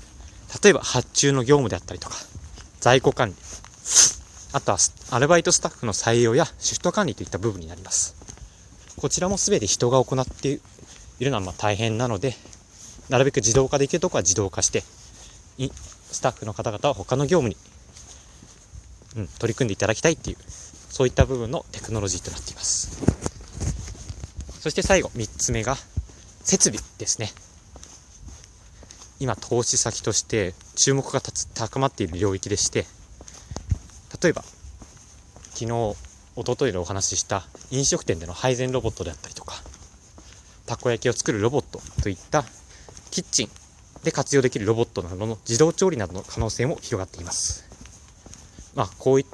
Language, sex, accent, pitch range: Japanese, male, native, 90-130 Hz